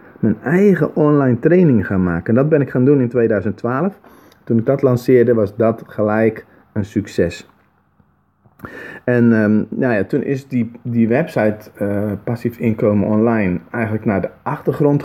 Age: 40-59